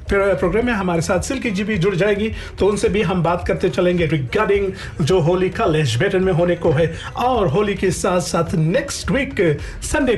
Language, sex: Hindi, male